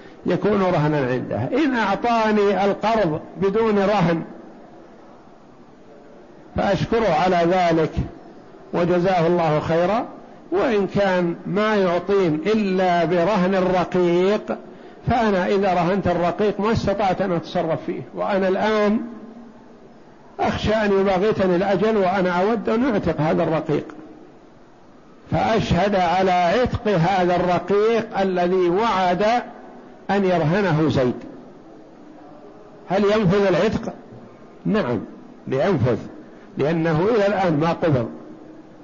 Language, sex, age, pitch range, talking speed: Arabic, male, 60-79, 175-210 Hz, 95 wpm